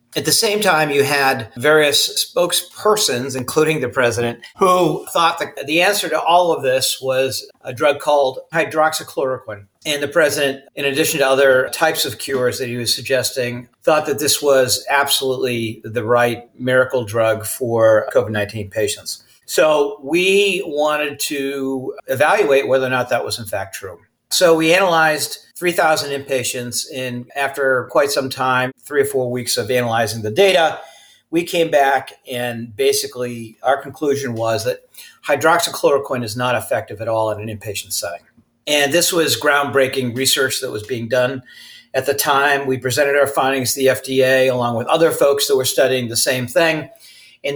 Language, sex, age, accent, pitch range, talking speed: English, male, 40-59, American, 125-155 Hz, 165 wpm